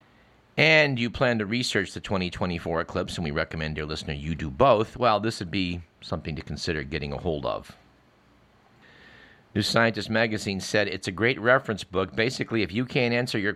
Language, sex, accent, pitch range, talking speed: English, male, American, 90-115 Hz, 185 wpm